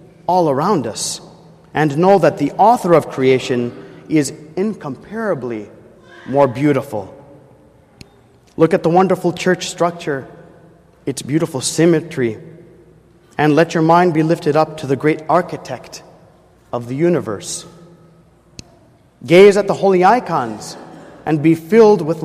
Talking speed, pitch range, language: 125 wpm, 140-185 Hz, English